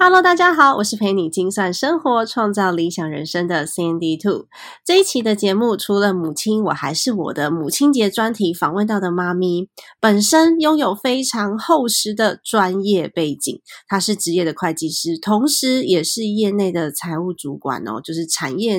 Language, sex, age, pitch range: Chinese, female, 20-39, 180-255 Hz